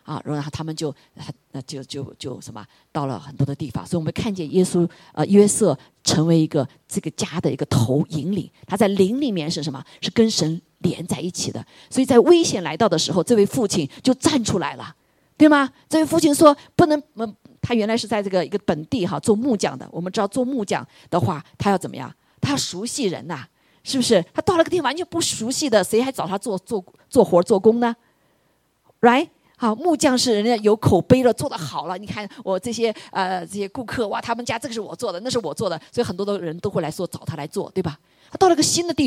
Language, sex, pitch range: Chinese, female, 165-245 Hz